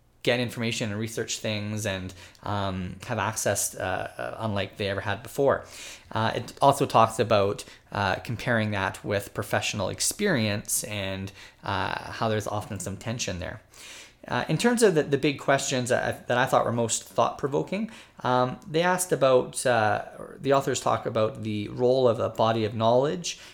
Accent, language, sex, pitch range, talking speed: American, English, male, 105-125 Hz, 165 wpm